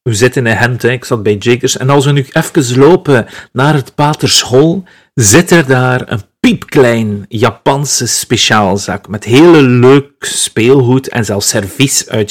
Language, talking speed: Dutch, 165 wpm